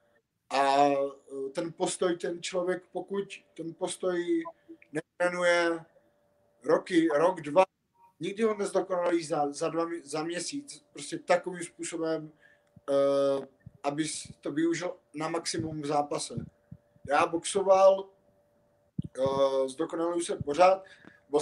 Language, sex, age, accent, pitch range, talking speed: Czech, male, 30-49, native, 145-180 Hz, 100 wpm